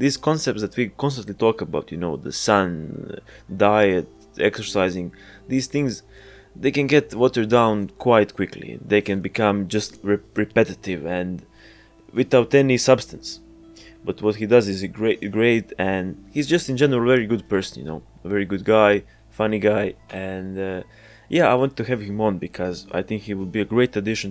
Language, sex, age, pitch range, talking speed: English, male, 20-39, 100-125 Hz, 180 wpm